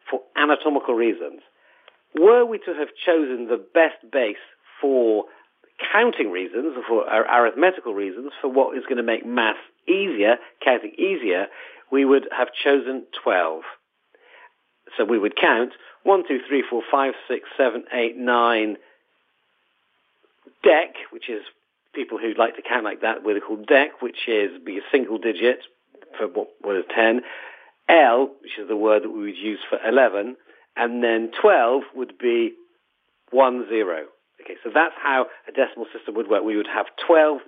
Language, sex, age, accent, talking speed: English, male, 50-69, British, 165 wpm